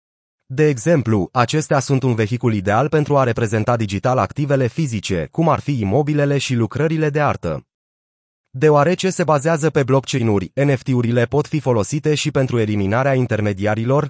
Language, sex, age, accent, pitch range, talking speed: Romanian, male, 30-49, native, 120-150 Hz, 145 wpm